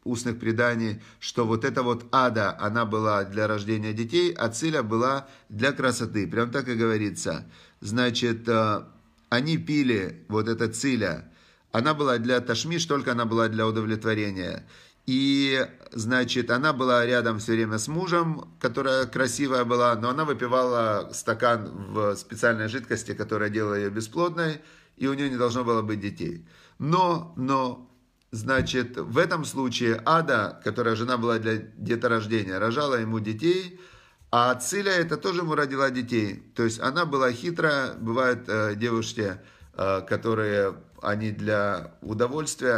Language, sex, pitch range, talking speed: Russian, male, 110-130 Hz, 140 wpm